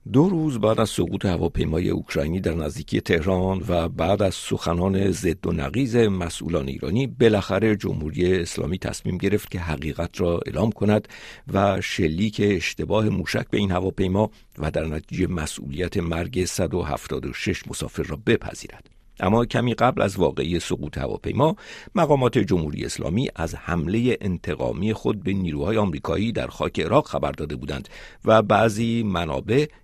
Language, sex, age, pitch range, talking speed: Persian, male, 60-79, 80-110 Hz, 145 wpm